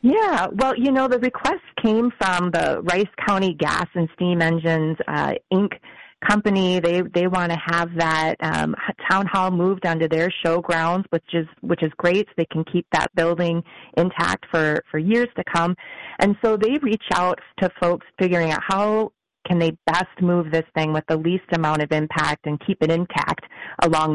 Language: English